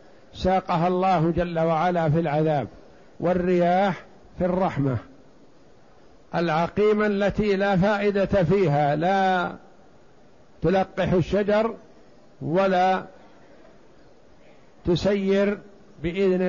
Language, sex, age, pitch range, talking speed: Arabic, male, 60-79, 170-200 Hz, 75 wpm